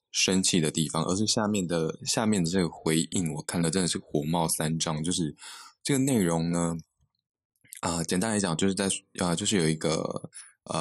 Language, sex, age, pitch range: Chinese, male, 20-39, 80-95 Hz